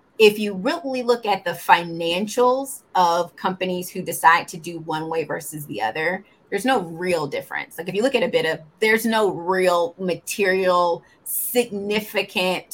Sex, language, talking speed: female, English, 165 wpm